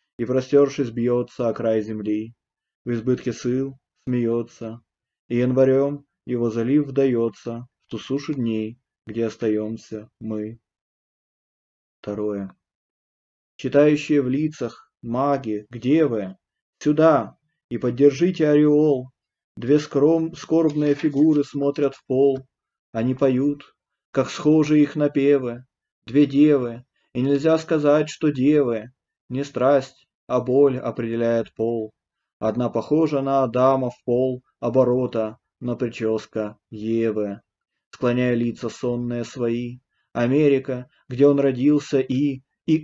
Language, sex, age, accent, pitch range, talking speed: Russian, male, 20-39, native, 115-145 Hz, 110 wpm